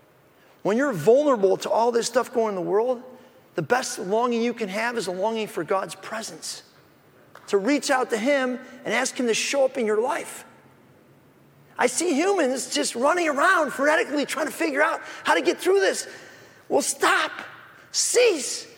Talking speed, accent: 180 wpm, American